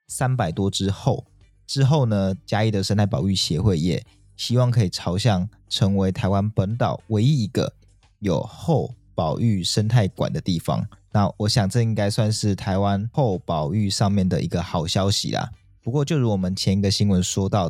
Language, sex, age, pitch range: Chinese, male, 20-39, 100-125 Hz